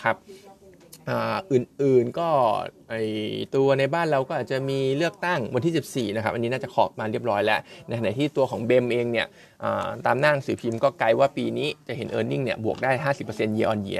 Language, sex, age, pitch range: Thai, male, 20-39, 115-145 Hz